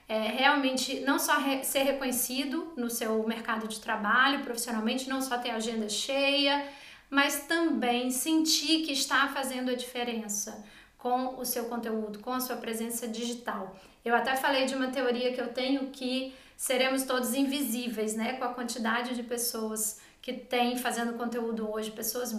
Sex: female